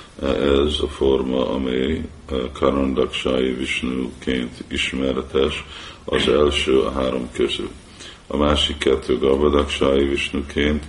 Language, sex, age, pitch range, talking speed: Hungarian, male, 50-69, 65-75 Hz, 95 wpm